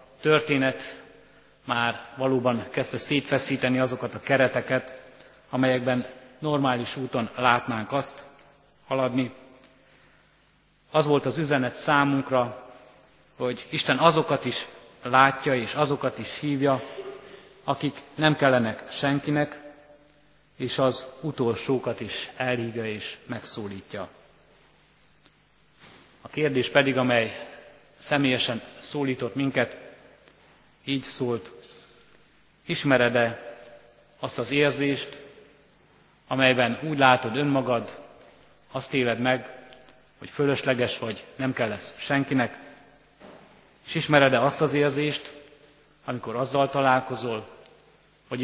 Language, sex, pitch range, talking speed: Hungarian, male, 125-140 Hz, 95 wpm